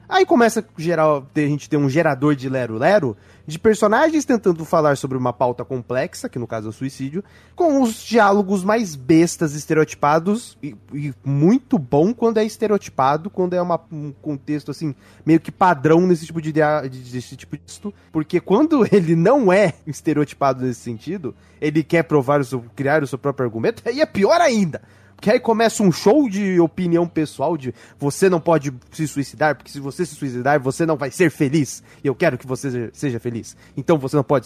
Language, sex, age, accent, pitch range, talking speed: Portuguese, male, 20-39, Brazilian, 140-200 Hz, 195 wpm